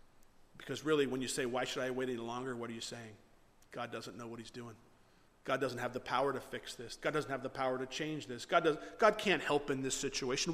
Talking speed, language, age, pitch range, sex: 250 wpm, English, 40-59, 130-185 Hz, male